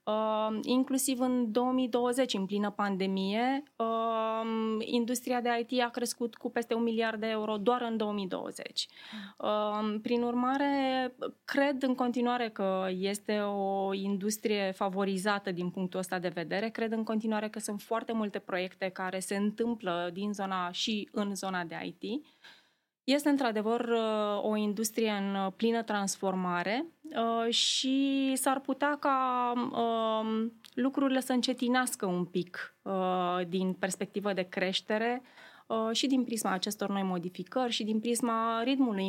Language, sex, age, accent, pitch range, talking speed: Romanian, female, 20-39, native, 195-245 Hz, 125 wpm